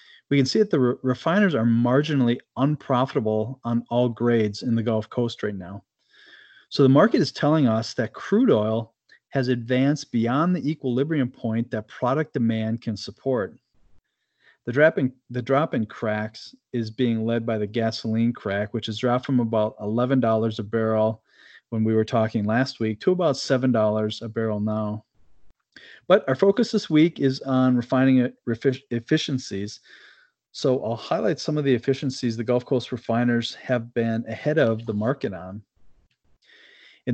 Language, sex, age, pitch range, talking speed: English, male, 40-59, 110-135 Hz, 165 wpm